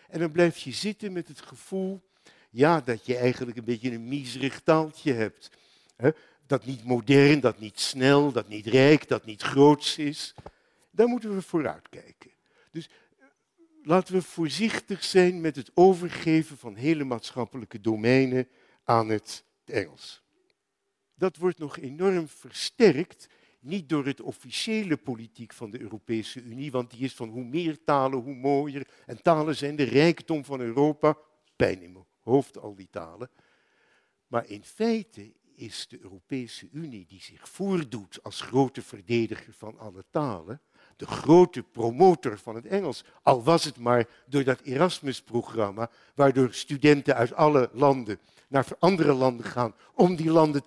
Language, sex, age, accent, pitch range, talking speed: Dutch, male, 60-79, Dutch, 120-165 Hz, 155 wpm